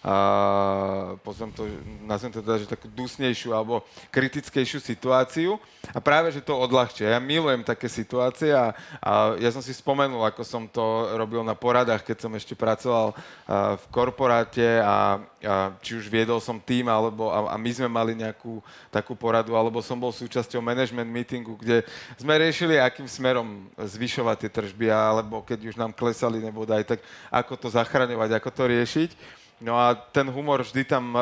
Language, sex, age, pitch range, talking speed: Slovak, male, 30-49, 115-135 Hz, 165 wpm